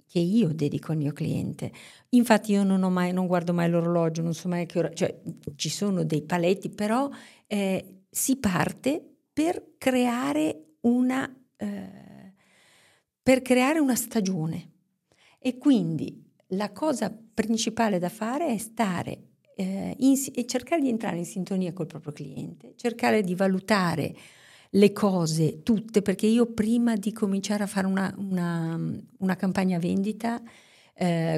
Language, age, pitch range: Italian, 50-69, 165-230 Hz